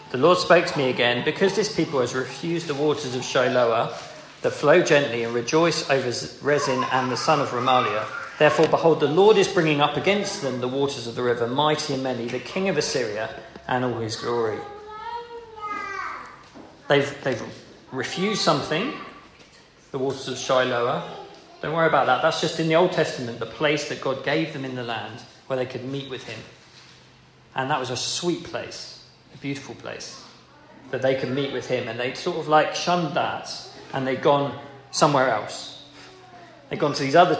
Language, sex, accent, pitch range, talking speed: English, male, British, 125-175 Hz, 185 wpm